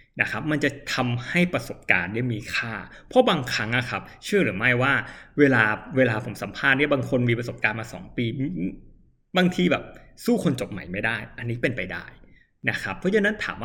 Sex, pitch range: male, 115-145 Hz